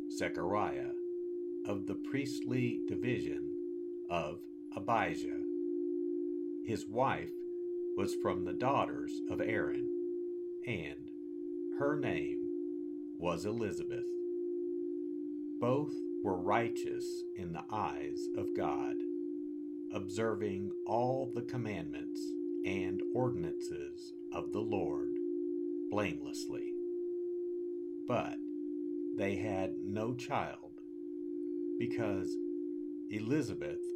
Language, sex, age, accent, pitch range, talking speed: English, male, 50-69, American, 325-345 Hz, 80 wpm